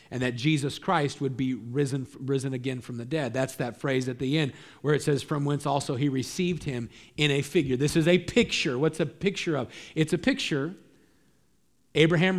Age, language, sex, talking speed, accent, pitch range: 40-59, English, male, 205 wpm, American, 130-160 Hz